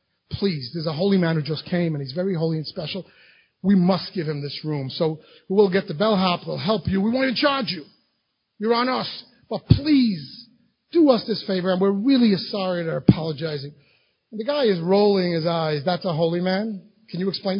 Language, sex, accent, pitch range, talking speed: English, male, American, 175-225 Hz, 215 wpm